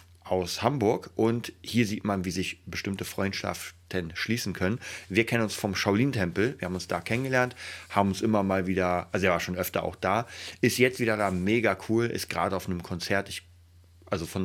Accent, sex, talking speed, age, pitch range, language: German, male, 200 wpm, 30-49, 90-110 Hz, German